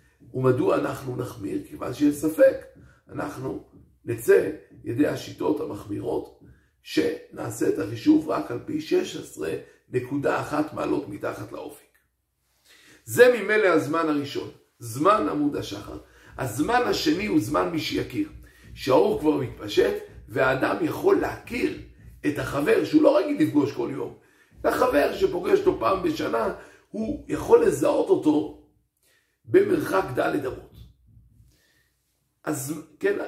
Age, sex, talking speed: 50-69, male, 110 wpm